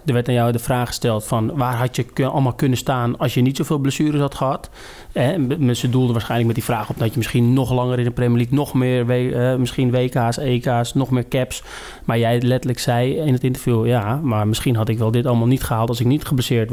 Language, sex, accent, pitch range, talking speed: Dutch, male, Dutch, 120-135 Hz, 250 wpm